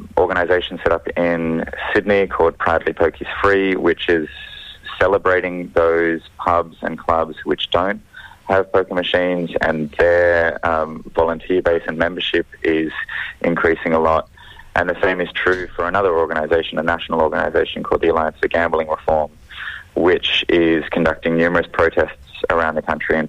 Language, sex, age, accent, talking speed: English, male, 20-39, Australian, 150 wpm